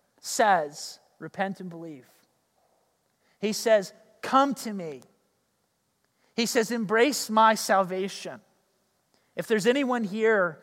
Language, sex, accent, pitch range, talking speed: English, male, American, 190-240 Hz, 100 wpm